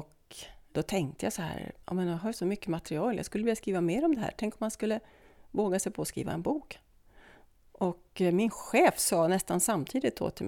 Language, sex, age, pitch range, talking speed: English, female, 30-49, 155-195 Hz, 220 wpm